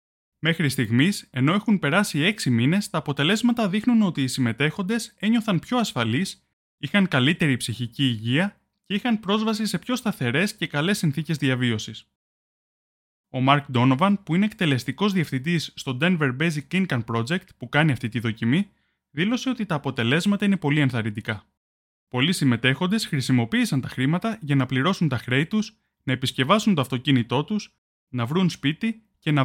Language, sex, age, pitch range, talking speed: Greek, male, 20-39, 125-200 Hz, 155 wpm